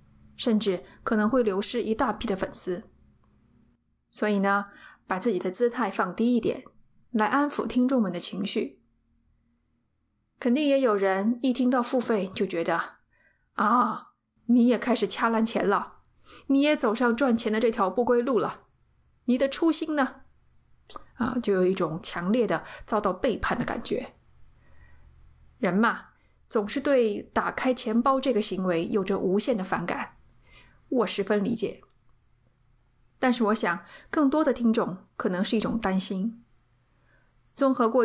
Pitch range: 180-245 Hz